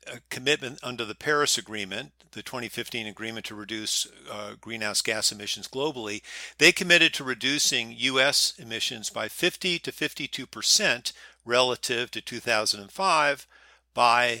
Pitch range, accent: 115-140 Hz, American